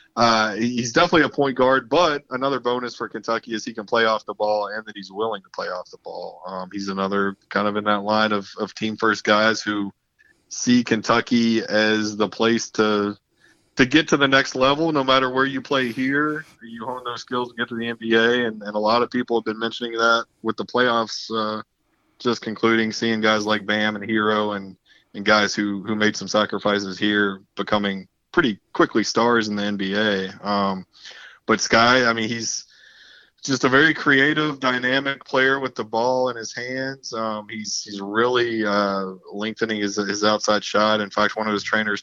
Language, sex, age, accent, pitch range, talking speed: English, male, 20-39, American, 100-120 Hz, 200 wpm